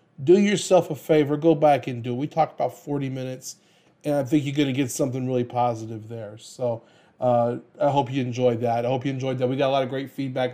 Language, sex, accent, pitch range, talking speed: English, male, American, 135-170 Hz, 250 wpm